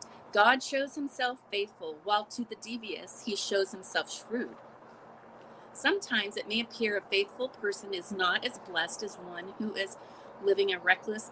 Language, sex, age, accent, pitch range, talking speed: English, female, 30-49, American, 200-270 Hz, 160 wpm